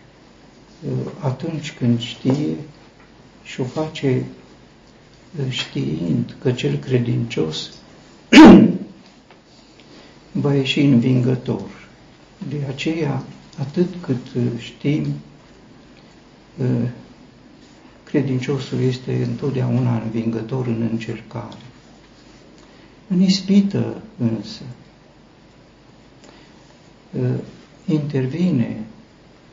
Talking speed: 55 wpm